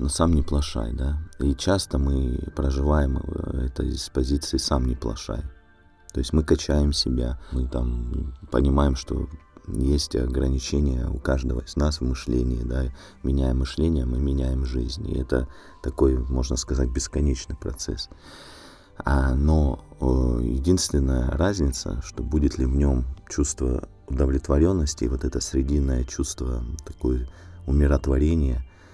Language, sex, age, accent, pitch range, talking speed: Russian, male, 30-49, native, 65-80 Hz, 130 wpm